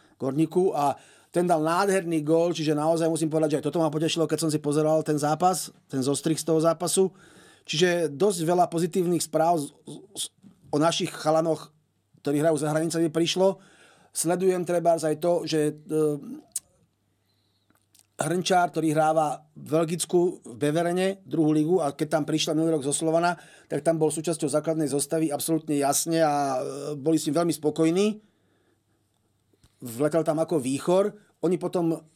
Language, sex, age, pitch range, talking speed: Slovak, male, 30-49, 150-170 Hz, 150 wpm